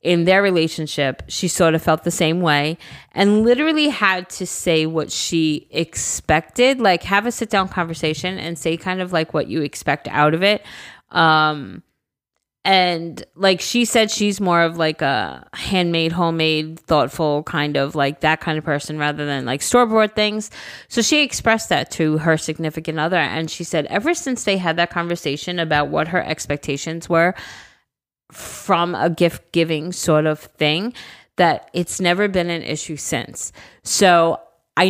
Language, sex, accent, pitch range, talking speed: English, female, American, 155-200 Hz, 170 wpm